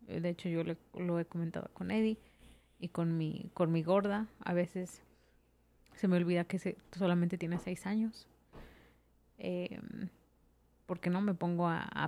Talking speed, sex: 170 wpm, female